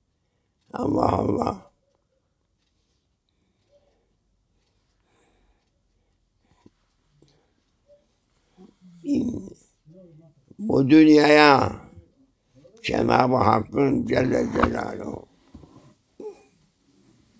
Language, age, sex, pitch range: English, 60-79, male, 110-155 Hz